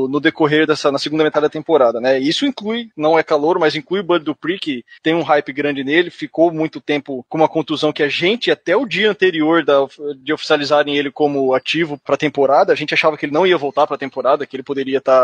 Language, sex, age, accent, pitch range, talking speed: Portuguese, male, 20-39, Brazilian, 135-160 Hz, 235 wpm